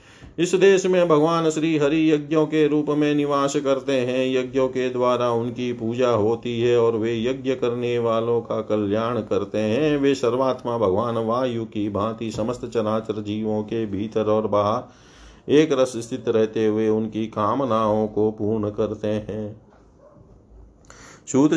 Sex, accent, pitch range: male, native, 110-135 Hz